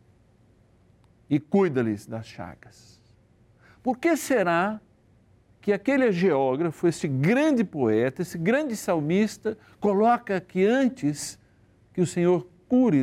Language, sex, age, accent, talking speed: Portuguese, male, 60-79, Brazilian, 105 wpm